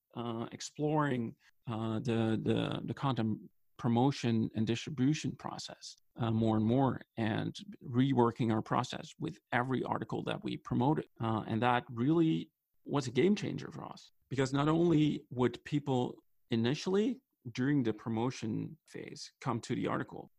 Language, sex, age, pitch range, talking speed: English, male, 40-59, 115-150 Hz, 145 wpm